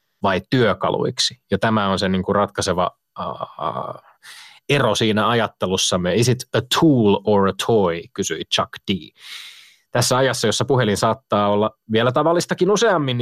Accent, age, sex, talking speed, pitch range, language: native, 30-49, male, 150 wpm, 105-145 Hz, Finnish